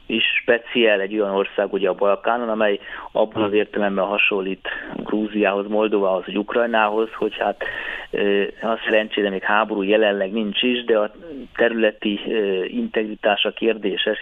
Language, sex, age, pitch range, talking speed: Hungarian, male, 20-39, 100-115 Hz, 130 wpm